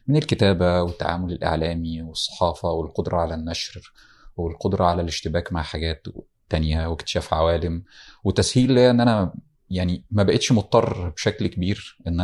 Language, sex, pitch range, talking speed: Arabic, male, 85-100 Hz, 125 wpm